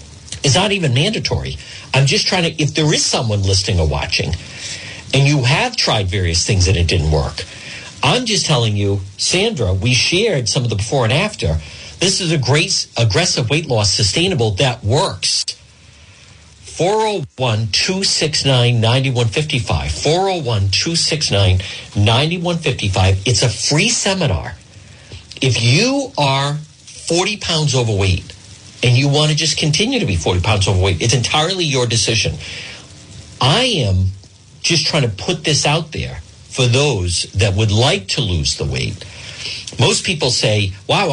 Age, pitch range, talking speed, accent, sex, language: 50-69, 95-150 Hz, 145 wpm, American, male, English